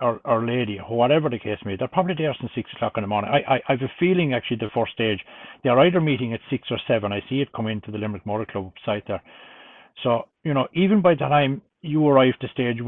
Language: English